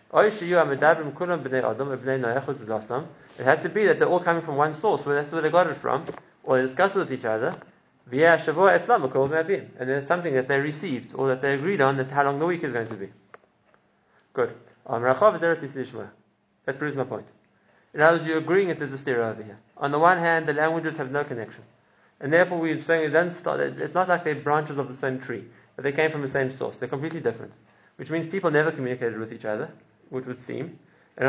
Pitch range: 130-160 Hz